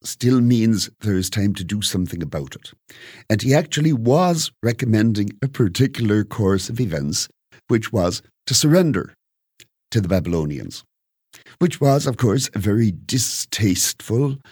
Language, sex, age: English, male, 60-79